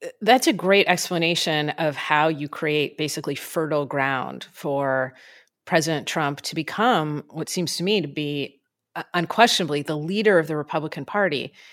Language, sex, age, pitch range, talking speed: English, female, 30-49, 155-210 Hz, 155 wpm